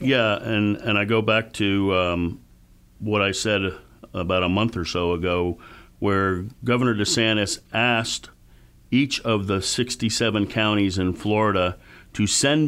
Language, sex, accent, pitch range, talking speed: English, male, American, 100-120 Hz, 140 wpm